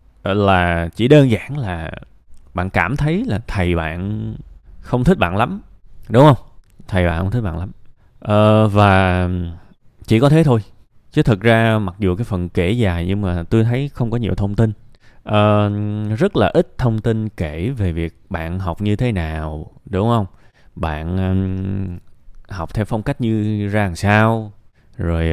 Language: Vietnamese